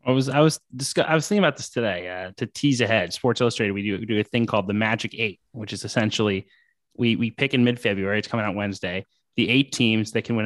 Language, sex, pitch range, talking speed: English, male, 110-135 Hz, 265 wpm